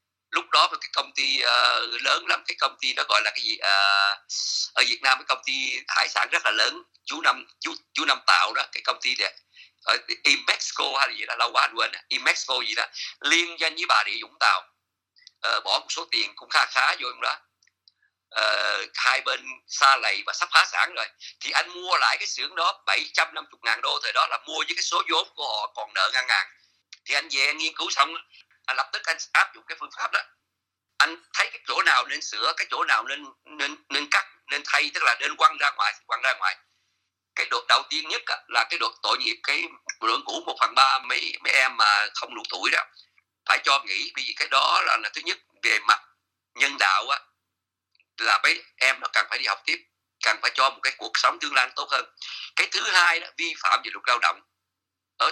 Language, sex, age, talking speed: Vietnamese, male, 50-69, 230 wpm